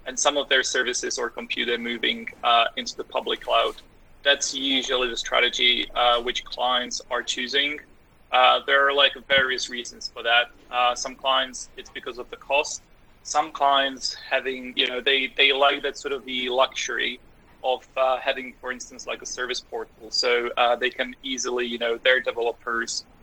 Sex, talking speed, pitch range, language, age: male, 180 wpm, 120-135 Hz, English, 20-39